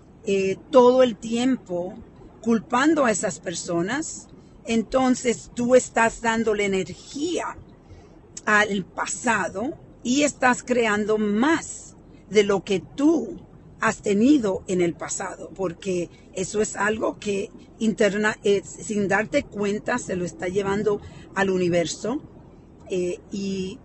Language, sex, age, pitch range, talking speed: Spanish, female, 40-59, 180-225 Hz, 120 wpm